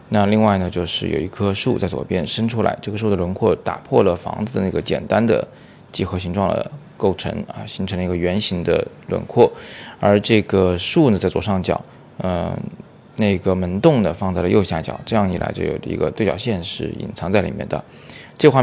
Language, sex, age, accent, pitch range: Chinese, male, 20-39, native, 90-105 Hz